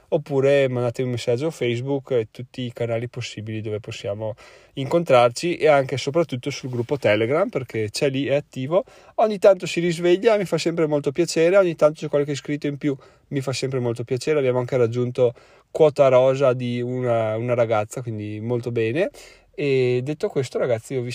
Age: 30-49